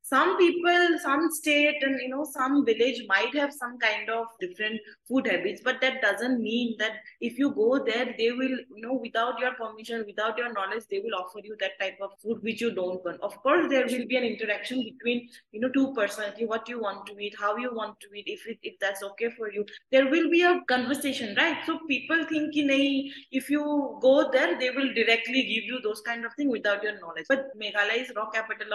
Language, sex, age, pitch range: English, female, 20-39, 215-280 Hz